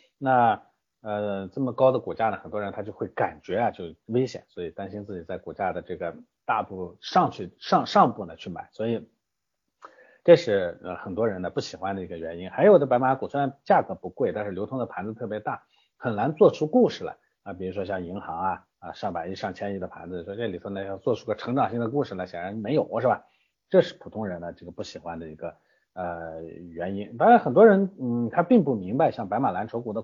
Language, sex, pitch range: Chinese, male, 100-145 Hz